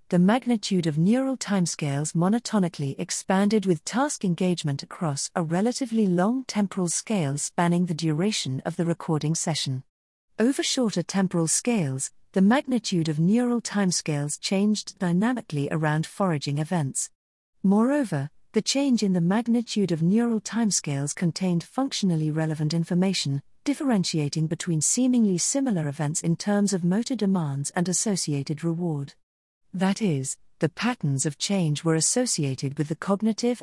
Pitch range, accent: 155-220 Hz, British